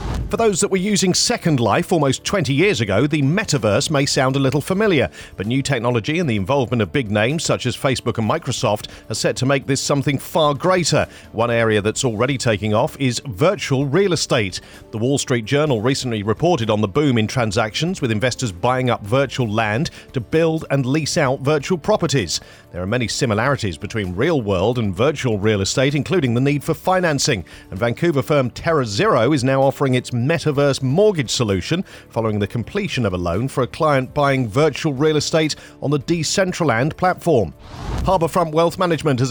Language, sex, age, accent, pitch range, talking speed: English, male, 40-59, British, 115-150 Hz, 185 wpm